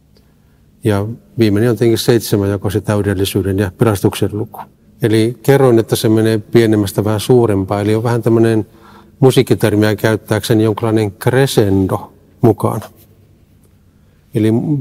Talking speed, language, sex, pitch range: 120 wpm, Finnish, male, 105-125 Hz